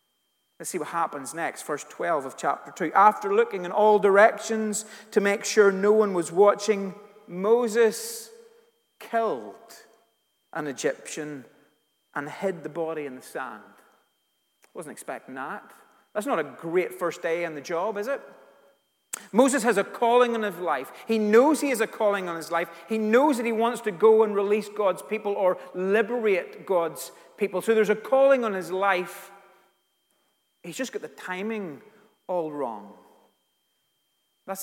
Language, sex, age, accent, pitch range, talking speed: English, male, 30-49, British, 180-225 Hz, 160 wpm